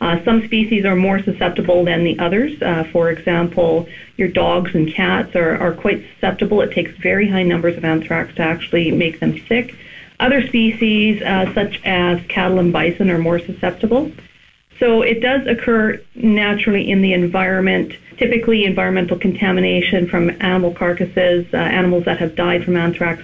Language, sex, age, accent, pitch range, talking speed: English, female, 40-59, American, 175-210 Hz, 165 wpm